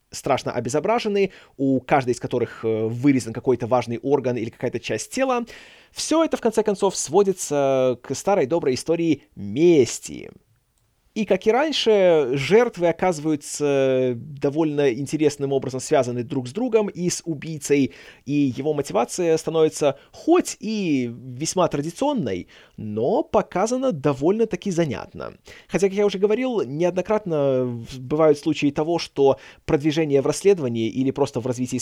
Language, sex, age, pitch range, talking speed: Russian, male, 20-39, 120-180 Hz, 130 wpm